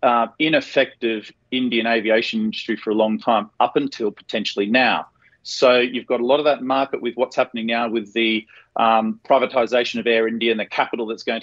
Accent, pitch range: Australian, 115-140 Hz